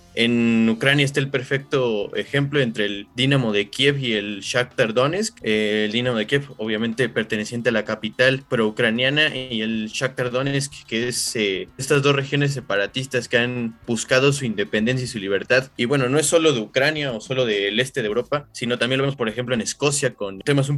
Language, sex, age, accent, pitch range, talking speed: Spanish, male, 20-39, Mexican, 110-140 Hz, 195 wpm